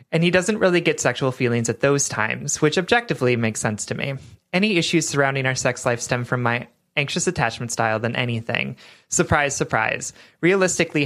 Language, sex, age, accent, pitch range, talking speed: English, male, 30-49, American, 125-165 Hz, 180 wpm